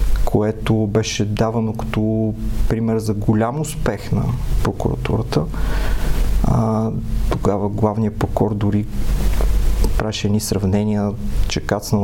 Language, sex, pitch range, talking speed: Bulgarian, male, 105-130 Hz, 95 wpm